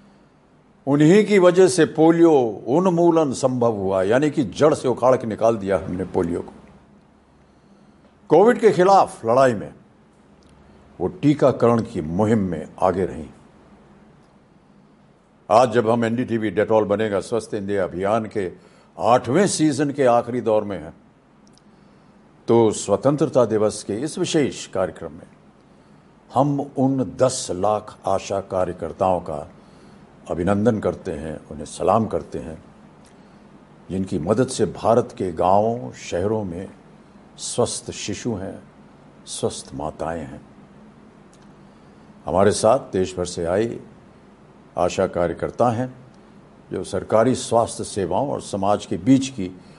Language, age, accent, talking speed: Hindi, 60-79, native, 125 wpm